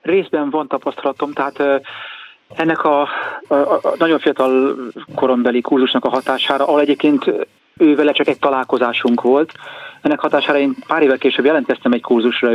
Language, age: Hungarian, 30-49